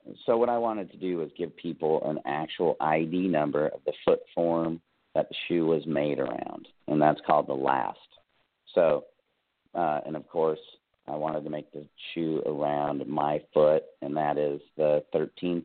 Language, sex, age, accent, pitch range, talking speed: English, male, 40-59, American, 75-95 Hz, 185 wpm